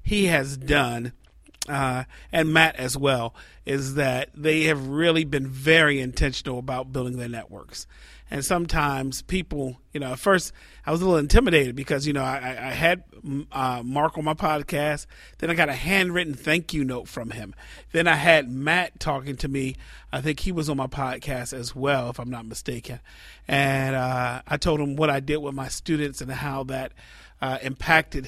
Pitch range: 130-155 Hz